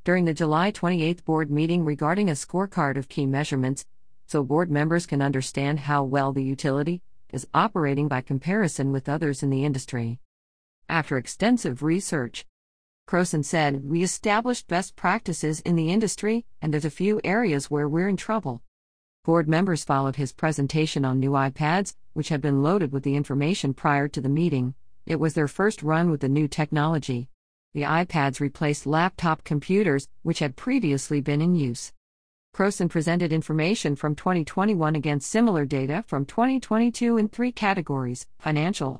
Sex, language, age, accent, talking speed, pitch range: female, English, 50-69, American, 160 wpm, 140-180 Hz